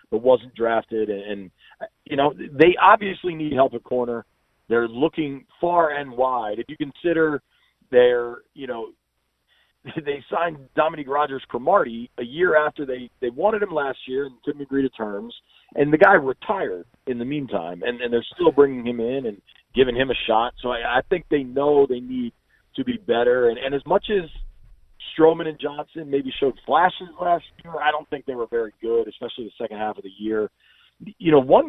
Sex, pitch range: male, 115-155 Hz